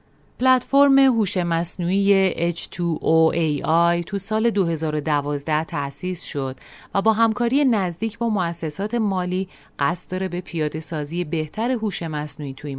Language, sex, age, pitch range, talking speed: Persian, female, 30-49, 155-210 Hz, 120 wpm